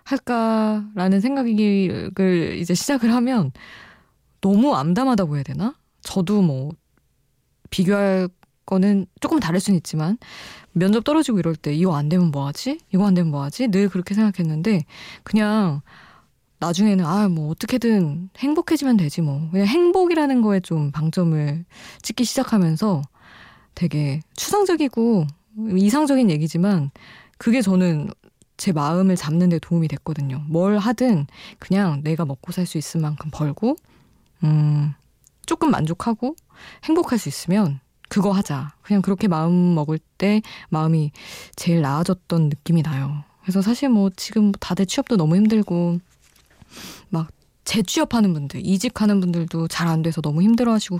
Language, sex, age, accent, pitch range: Korean, female, 20-39, native, 160-220 Hz